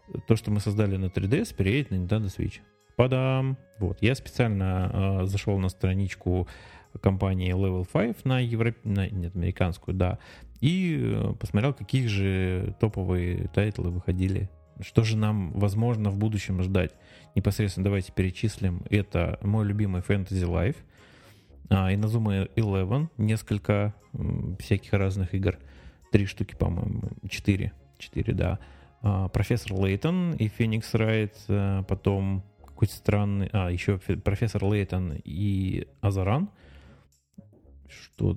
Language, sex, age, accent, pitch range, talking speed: Russian, male, 30-49, native, 95-110 Hz, 130 wpm